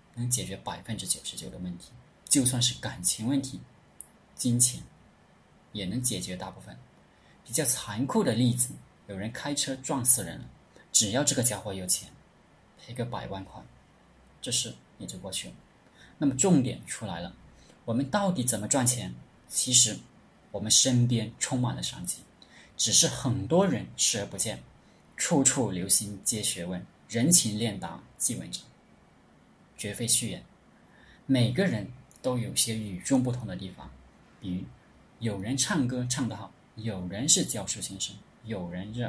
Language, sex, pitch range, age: Chinese, male, 100-130 Hz, 20-39